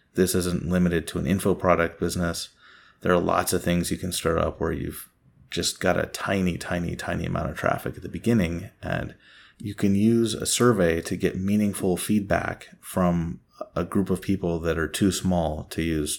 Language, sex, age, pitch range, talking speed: English, male, 30-49, 85-100 Hz, 195 wpm